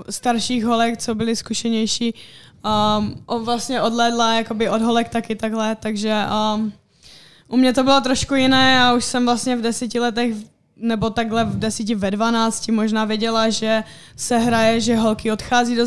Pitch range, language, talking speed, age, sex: 215-235 Hz, Czech, 165 wpm, 10-29, female